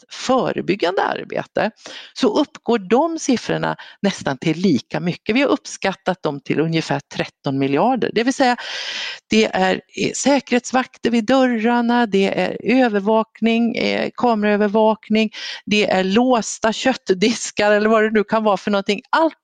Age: 50-69